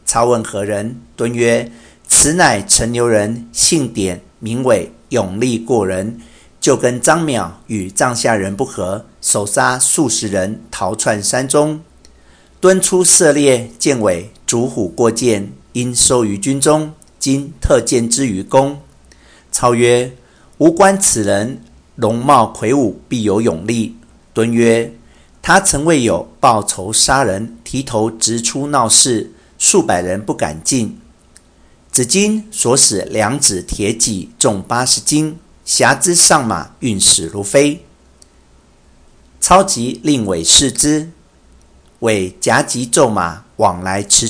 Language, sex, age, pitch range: Chinese, male, 50-69, 100-135 Hz